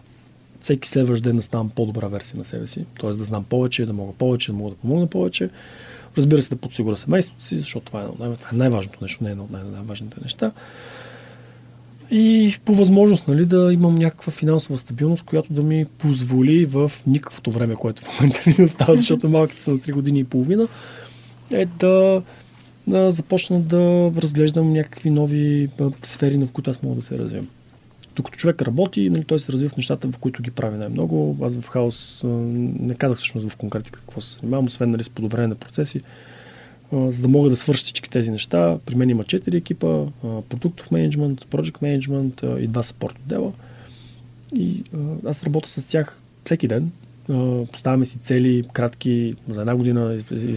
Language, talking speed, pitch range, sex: Bulgarian, 175 wpm, 120-150 Hz, male